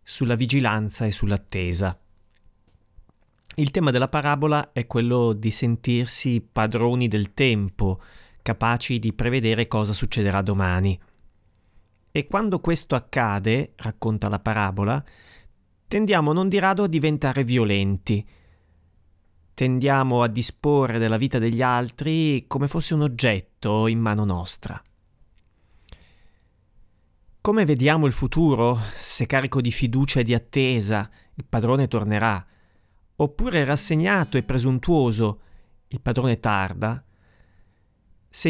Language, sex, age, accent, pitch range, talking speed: Italian, male, 30-49, native, 100-140 Hz, 110 wpm